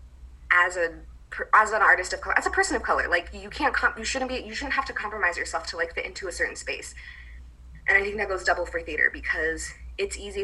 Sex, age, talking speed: female, 20-39, 245 wpm